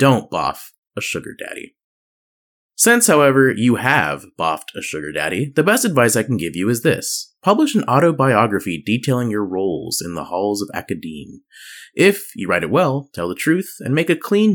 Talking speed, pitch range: 185 wpm, 95-150 Hz